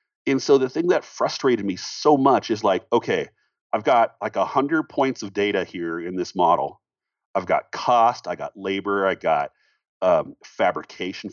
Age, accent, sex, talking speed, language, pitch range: 40-59, American, male, 180 wpm, English, 100-130 Hz